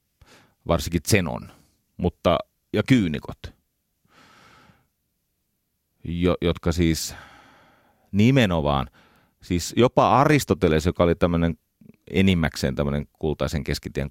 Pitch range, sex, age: 75-95 Hz, male, 30-49